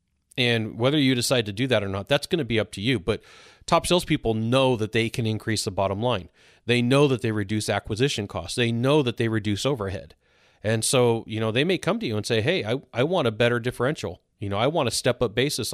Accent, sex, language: American, male, English